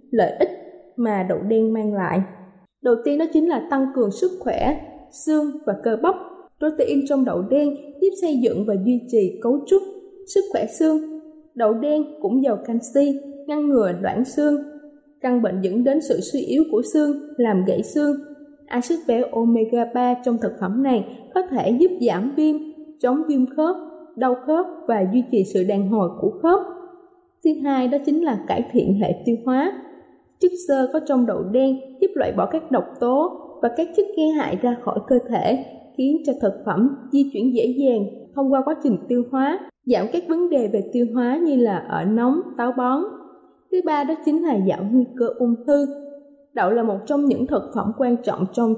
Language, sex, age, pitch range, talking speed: Vietnamese, female, 20-39, 235-305 Hz, 195 wpm